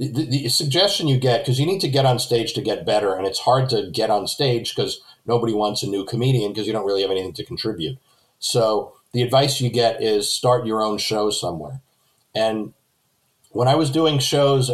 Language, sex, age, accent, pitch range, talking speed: English, male, 50-69, American, 115-135 Hz, 215 wpm